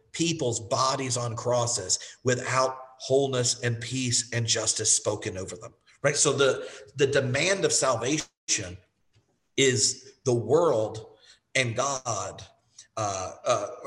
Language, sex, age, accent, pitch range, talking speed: English, male, 50-69, American, 110-130 Hz, 115 wpm